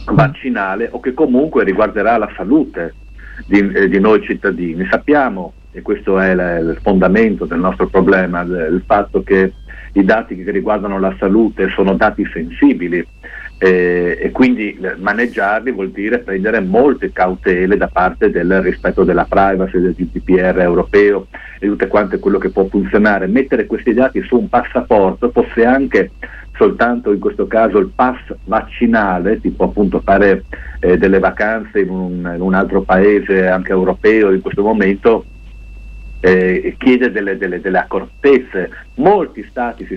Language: Italian